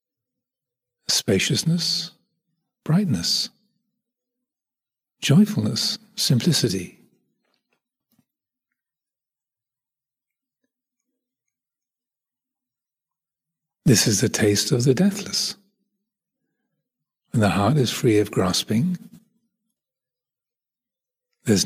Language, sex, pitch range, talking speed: English, male, 135-220 Hz, 55 wpm